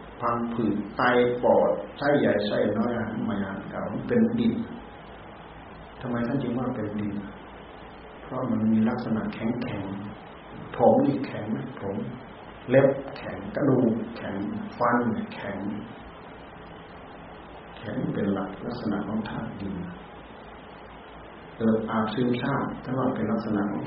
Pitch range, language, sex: 105-125 Hz, Thai, male